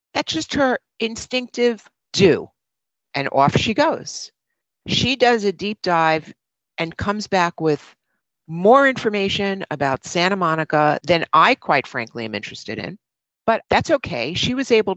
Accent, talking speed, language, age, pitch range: American, 145 wpm, English, 50-69, 150-220 Hz